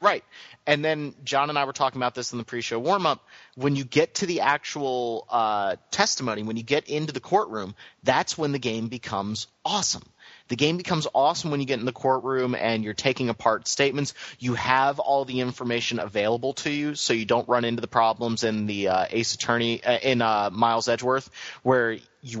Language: English